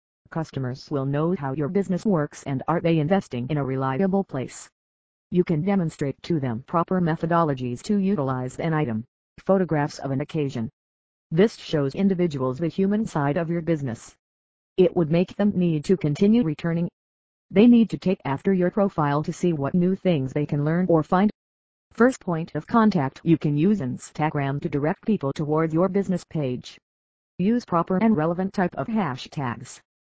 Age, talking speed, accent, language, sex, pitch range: 50-69, 175 wpm, American, English, female, 135-185 Hz